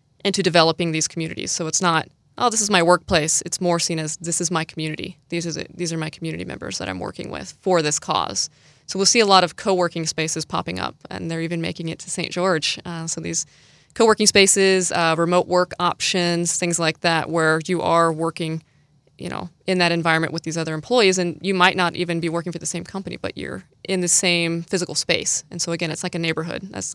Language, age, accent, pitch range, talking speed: English, 20-39, American, 160-180 Hz, 230 wpm